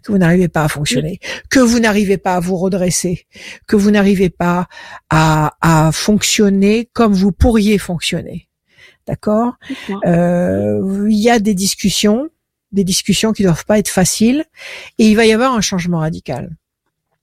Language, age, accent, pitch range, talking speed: French, 60-79, French, 190-230 Hz, 160 wpm